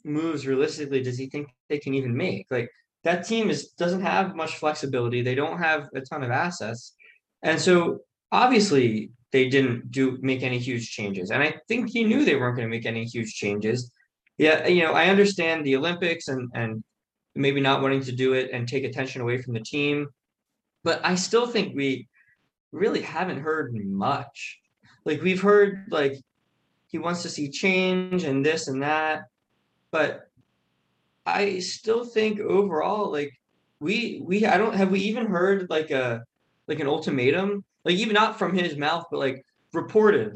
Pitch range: 130-180 Hz